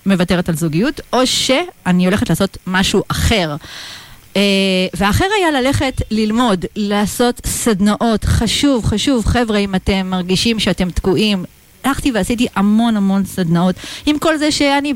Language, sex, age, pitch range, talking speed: Hebrew, female, 40-59, 175-255 Hz, 130 wpm